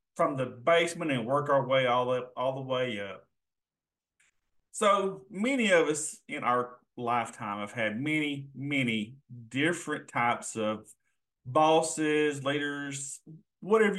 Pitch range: 130-165 Hz